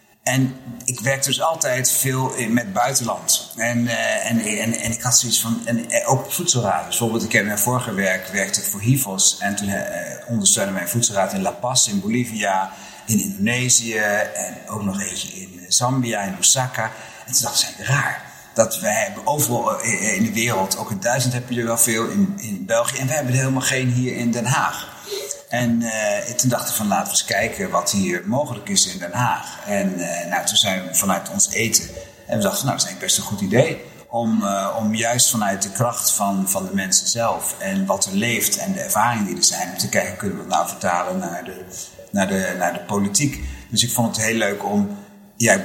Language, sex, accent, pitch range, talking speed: Dutch, male, Dutch, 105-130 Hz, 220 wpm